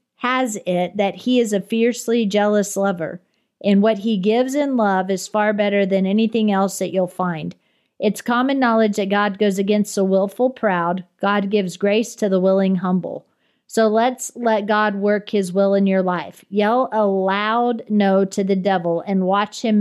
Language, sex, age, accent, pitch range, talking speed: English, female, 40-59, American, 190-220 Hz, 185 wpm